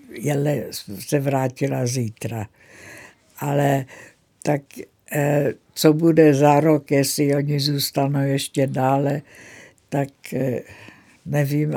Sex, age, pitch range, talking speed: female, 60-79, 130-150 Hz, 80 wpm